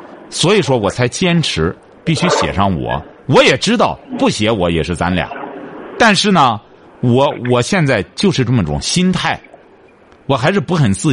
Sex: male